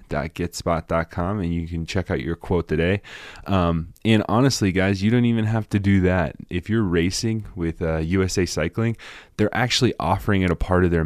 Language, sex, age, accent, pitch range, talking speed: English, male, 20-39, American, 80-100 Hz, 190 wpm